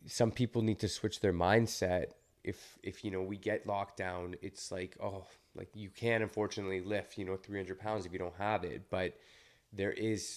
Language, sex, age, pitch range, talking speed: English, male, 20-39, 95-105 Hz, 205 wpm